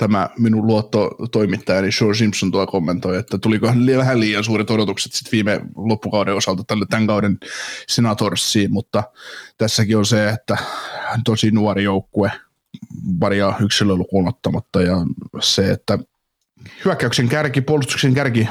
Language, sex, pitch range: Finnish, male, 100-115 Hz